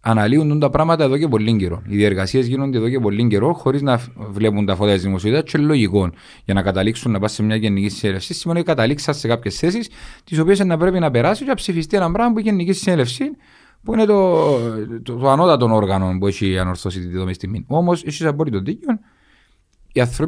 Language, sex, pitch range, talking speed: Greek, male, 100-145 Hz, 170 wpm